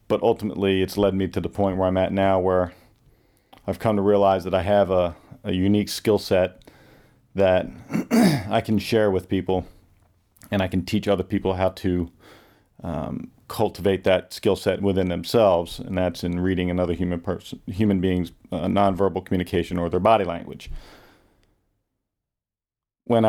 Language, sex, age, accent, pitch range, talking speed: English, male, 40-59, American, 90-105 Hz, 160 wpm